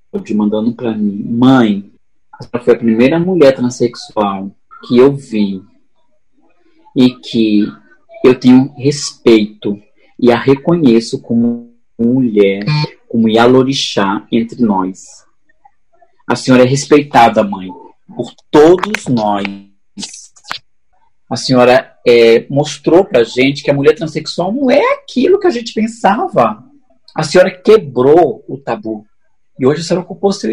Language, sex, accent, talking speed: Portuguese, male, Brazilian, 120 wpm